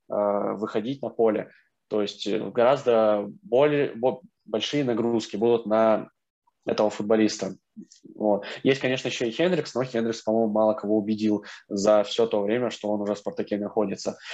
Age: 20-39